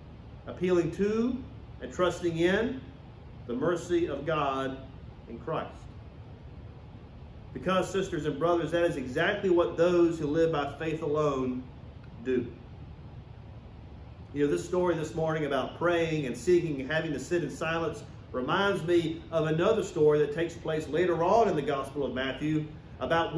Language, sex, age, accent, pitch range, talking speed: English, male, 40-59, American, 135-205 Hz, 150 wpm